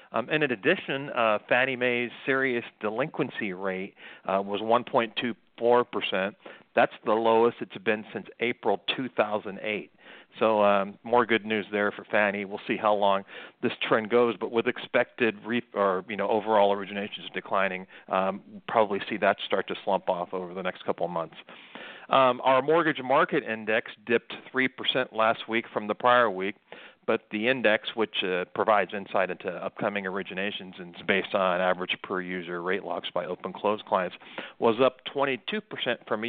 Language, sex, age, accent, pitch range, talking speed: English, male, 40-59, American, 100-130 Hz, 180 wpm